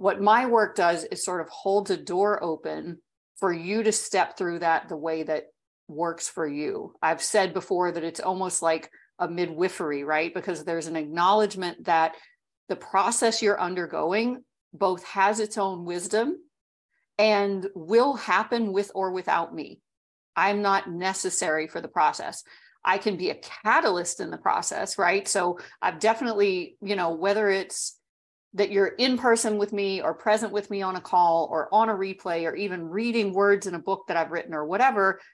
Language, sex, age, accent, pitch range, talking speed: English, female, 40-59, American, 175-225 Hz, 180 wpm